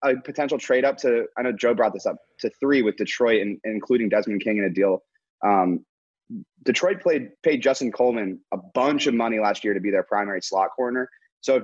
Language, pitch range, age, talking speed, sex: English, 100-140 Hz, 30-49, 220 wpm, male